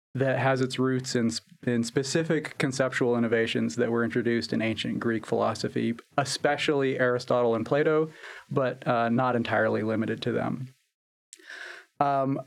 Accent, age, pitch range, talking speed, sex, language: American, 30-49, 115-135 Hz, 135 wpm, male, English